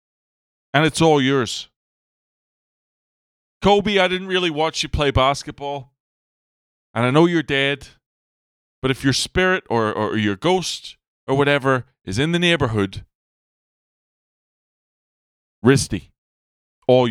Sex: male